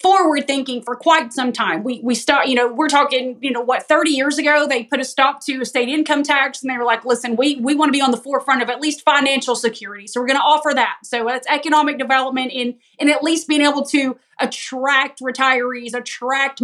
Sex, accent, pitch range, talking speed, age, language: female, American, 245-295 Hz, 235 wpm, 30-49, English